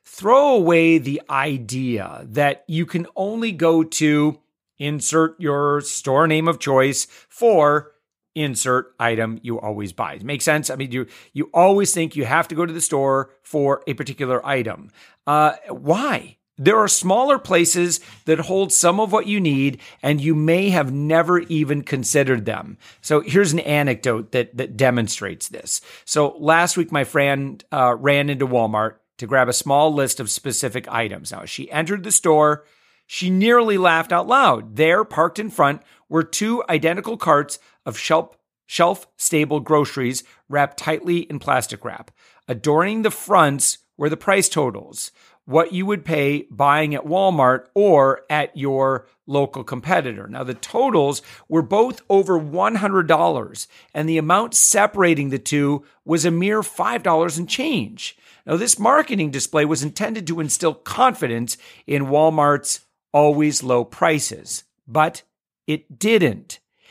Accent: American